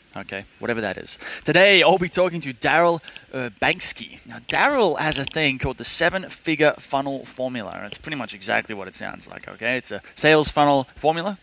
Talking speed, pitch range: 195 wpm, 125-160 Hz